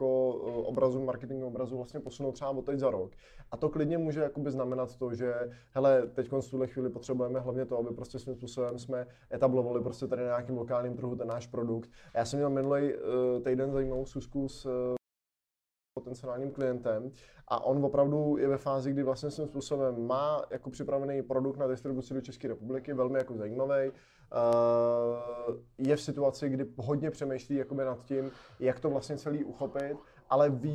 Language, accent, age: Czech, native, 20-39